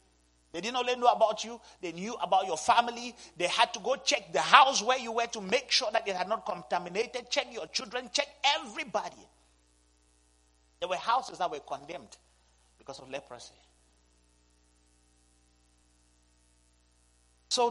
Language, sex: English, male